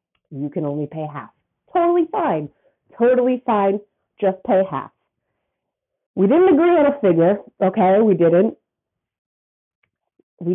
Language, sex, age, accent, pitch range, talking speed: English, female, 30-49, American, 165-235 Hz, 125 wpm